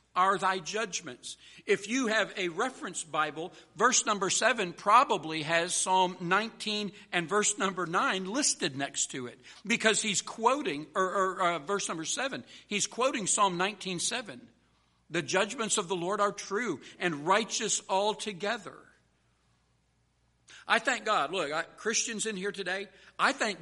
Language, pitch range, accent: English, 150-210 Hz, American